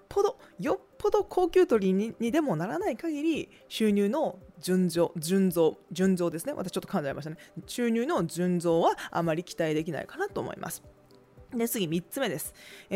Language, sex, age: Japanese, female, 20-39